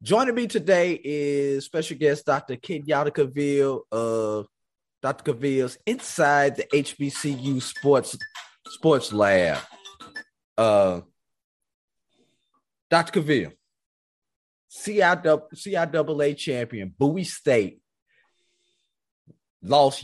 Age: 30-49